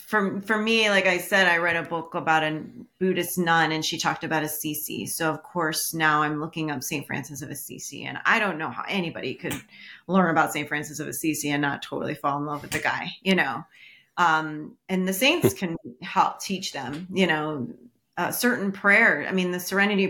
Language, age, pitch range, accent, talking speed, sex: English, 30-49, 155-195 Hz, American, 210 wpm, female